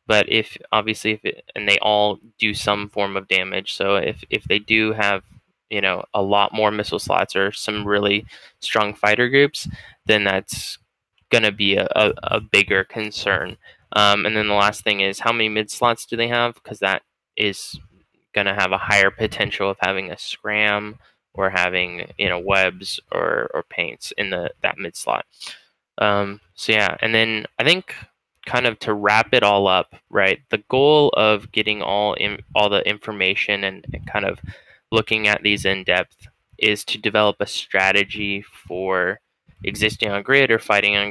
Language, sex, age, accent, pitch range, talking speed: English, male, 10-29, American, 100-110 Hz, 185 wpm